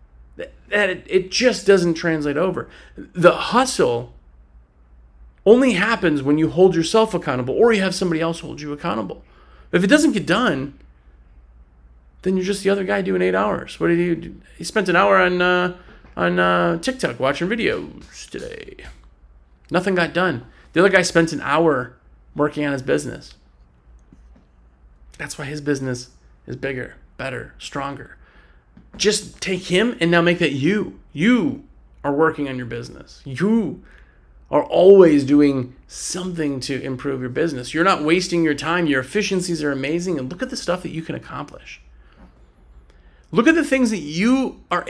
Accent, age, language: American, 30-49, English